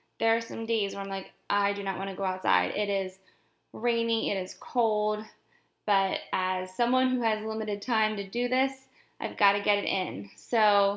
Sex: female